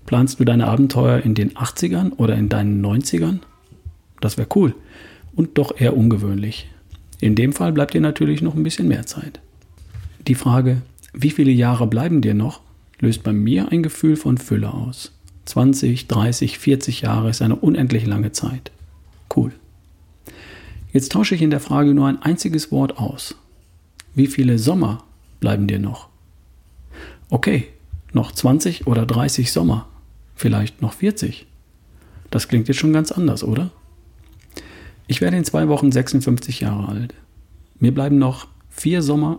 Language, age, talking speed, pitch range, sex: German, 40-59, 155 wpm, 95-140 Hz, male